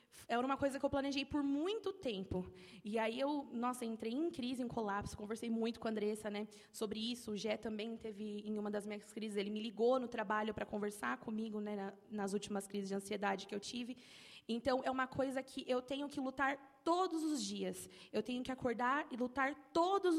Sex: female